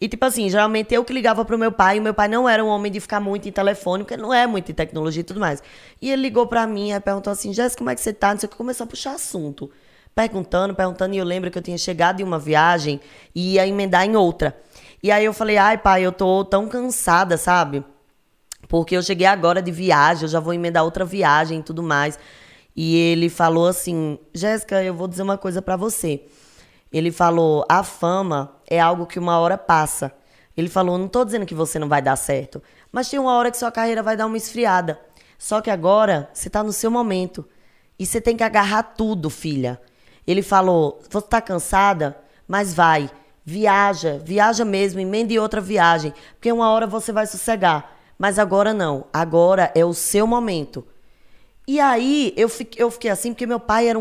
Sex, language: female, Portuguese